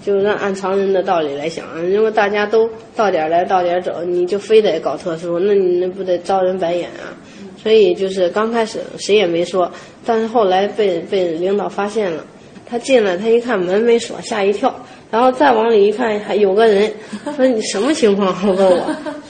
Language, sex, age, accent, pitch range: Chinese, female, 20-39, native, 180-220 Hz